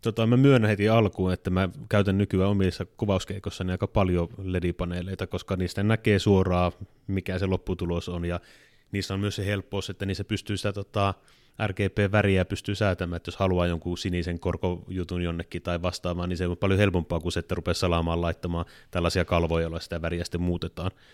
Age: 30-49